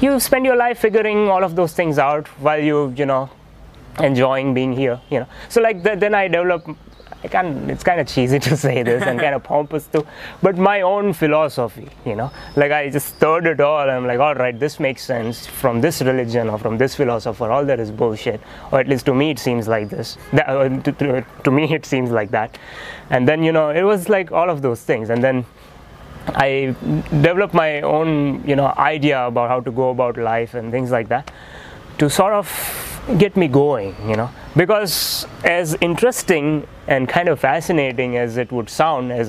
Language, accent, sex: Gujarati, native, male